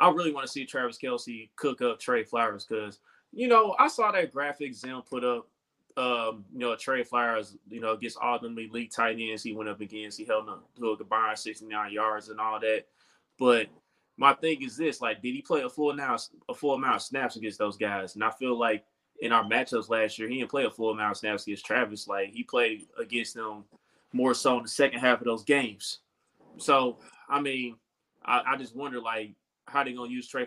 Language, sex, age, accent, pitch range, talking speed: English, male, 20-39, American, 110-140 Hz, 220 wpm